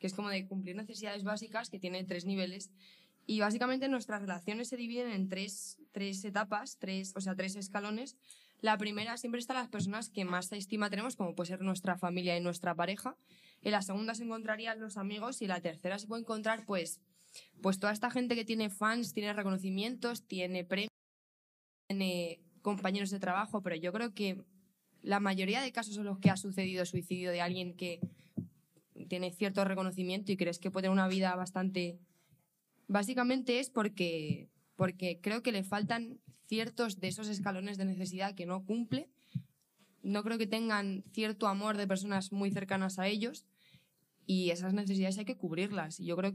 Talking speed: 180 wpm